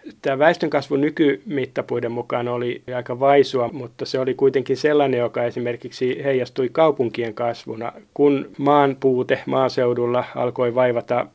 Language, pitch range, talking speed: Finnish, 120-135 Hz, 115 wpm